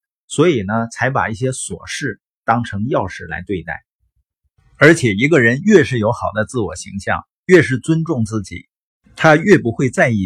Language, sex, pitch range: Chinese, male, 100-140 Hz